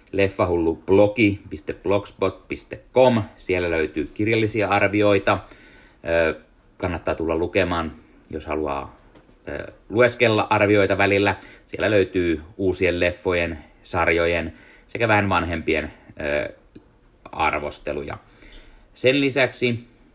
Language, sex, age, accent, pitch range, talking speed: Finnish, male, 30-49, native, 90-110 Hz, 70 wpm